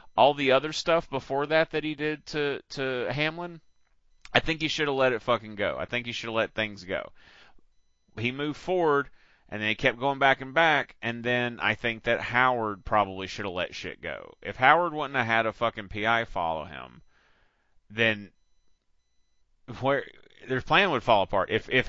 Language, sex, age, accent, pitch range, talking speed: English, male, 30-49, American, 95-145 Hz, 195 wpm